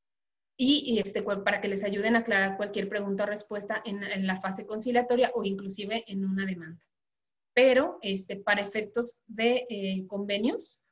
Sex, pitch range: female, 195-225 Hz